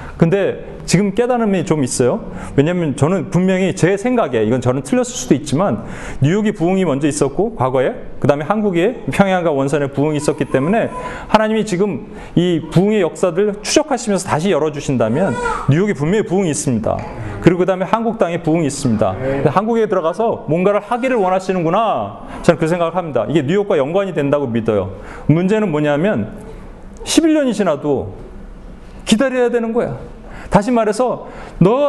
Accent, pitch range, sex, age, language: native, 150-220 Hz, male, 30-49, Korean